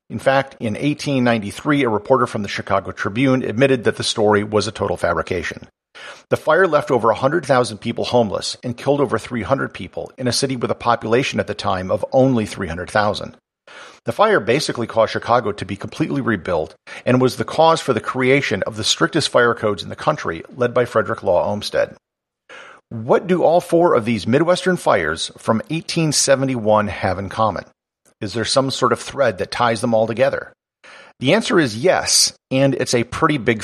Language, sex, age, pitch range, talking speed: English, male, 50-69, 110-140 Hz, 185 wpm